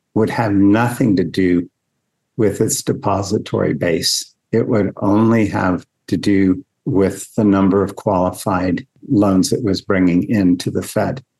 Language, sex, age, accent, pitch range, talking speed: English, male, 50-69, American, 95-115 Hz, 140 wpm